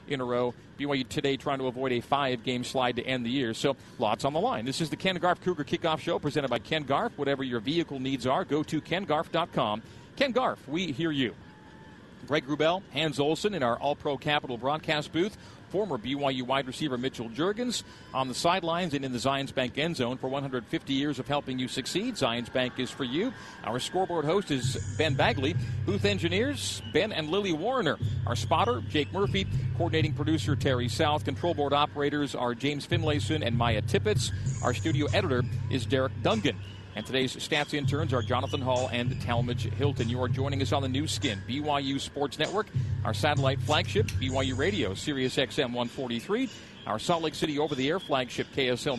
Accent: American